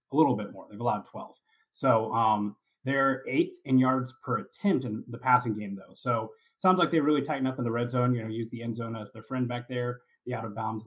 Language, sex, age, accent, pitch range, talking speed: English, male, 30-49, American, 115-130 Hz, 260 wpm